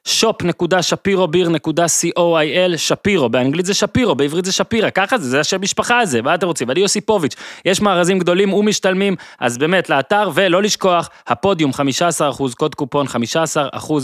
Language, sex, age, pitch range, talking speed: Hebrew, male, 20-39, 130-175 Hz, 135 wpm